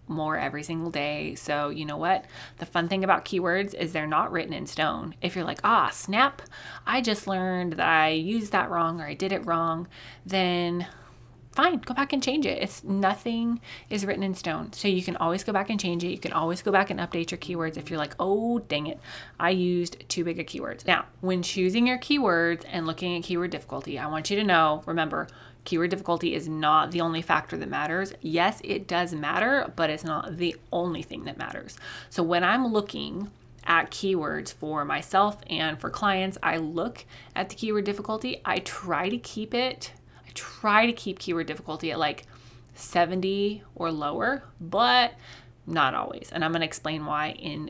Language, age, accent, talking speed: English, 20-39, American, 200 wpm